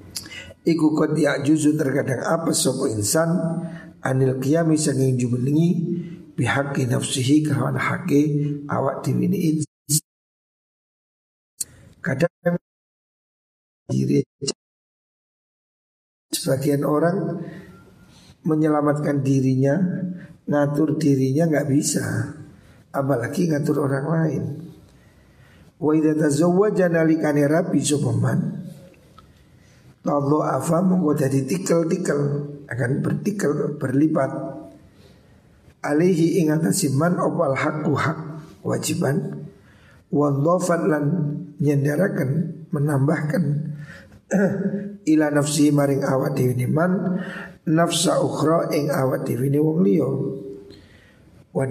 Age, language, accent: 50-69, Indonesian, native